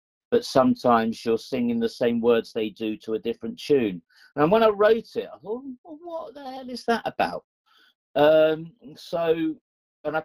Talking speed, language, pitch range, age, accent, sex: 180 wpm, English, 125-195 Hz, 50-69, British, male